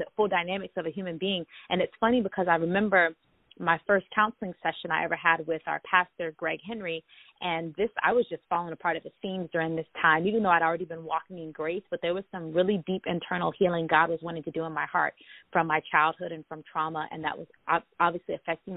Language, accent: English, American